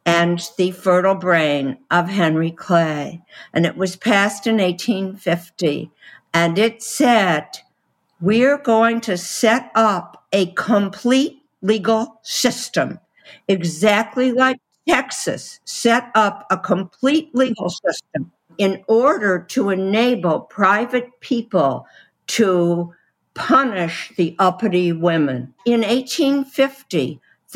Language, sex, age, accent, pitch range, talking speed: English, female, 60-79, American, 175-230 Hz, 100 wpm